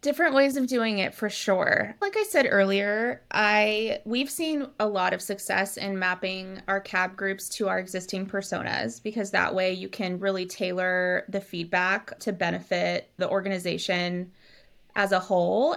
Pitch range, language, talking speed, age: 185-215 Hz, English, 165 wpm, 20-39